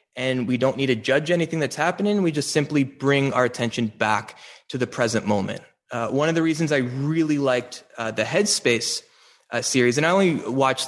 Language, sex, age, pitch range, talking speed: English, male, 20-39, 115-145 Hz, 205 wpm